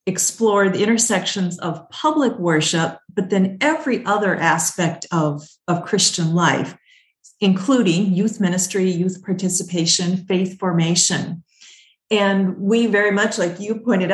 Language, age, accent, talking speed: English, 50-69, American, 125 wpm